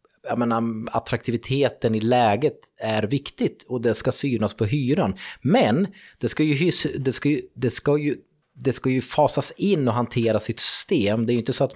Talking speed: 190 wpm